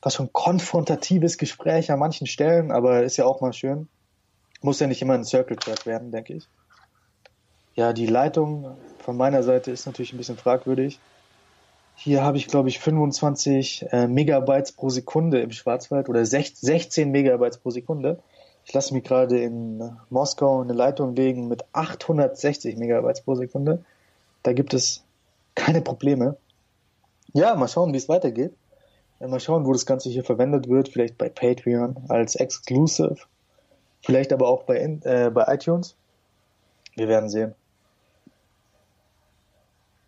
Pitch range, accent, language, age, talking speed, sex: 115-140 Hz, German, German, 20-39, 150 wpm, male